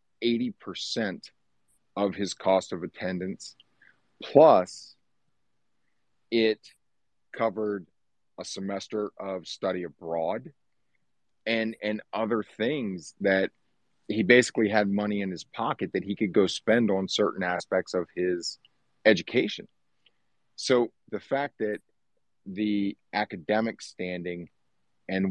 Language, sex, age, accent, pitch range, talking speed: English, male, 40-59, American, 95-110 Hz, 105 wpm